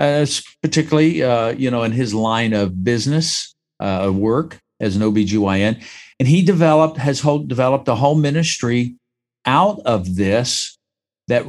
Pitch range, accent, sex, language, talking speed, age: 110-145 Hz, American, male, English, 145 wpm, 50-69